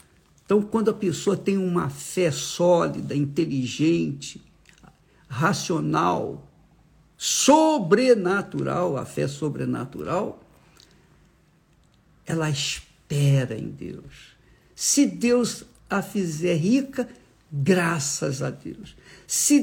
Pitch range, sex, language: 145-205 Hz, male, Portuguese